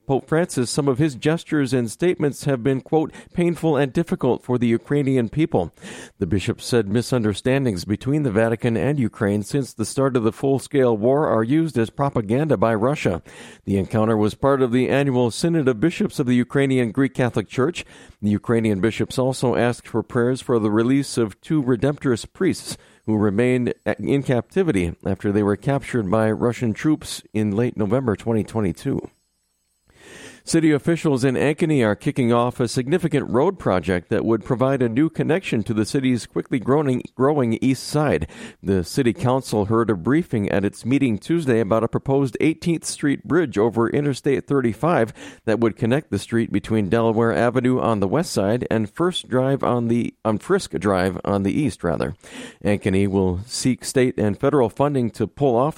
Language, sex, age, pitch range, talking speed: English, male, 50-69, 110-140 Hz, 175 wpm